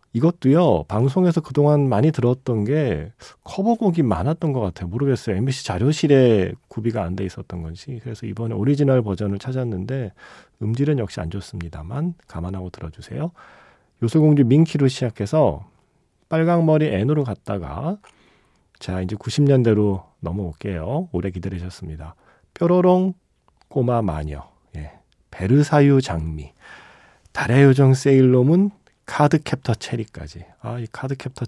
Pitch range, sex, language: 95-140 Hz, male, Korean